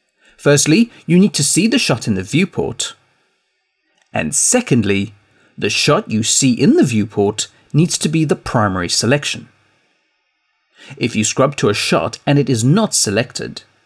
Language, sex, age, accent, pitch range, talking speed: English, male, 30-49, British, 115-185 Hz, 155 wpm